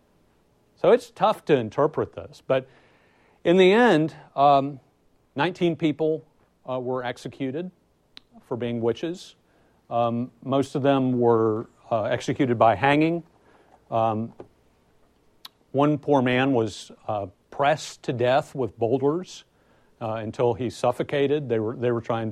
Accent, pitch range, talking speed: American, 110-135 Hz, 130 wpm